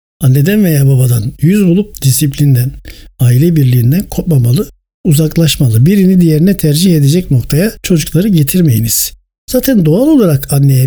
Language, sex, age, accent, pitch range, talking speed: Turkish, male, 60-79, native, 130-175 Hz, 115 wpm